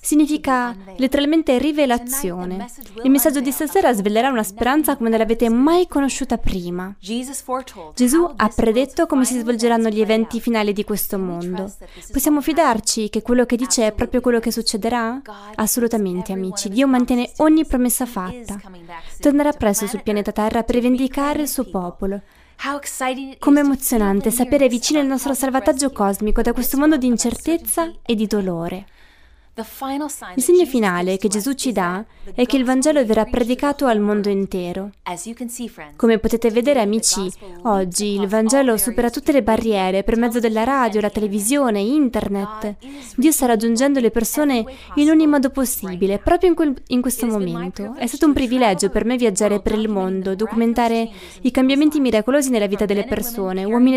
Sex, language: female, Italian